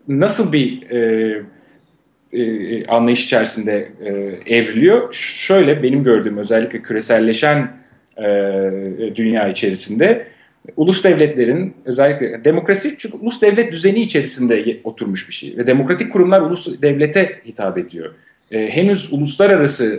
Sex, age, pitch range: male, 40-59, 115-165 Hz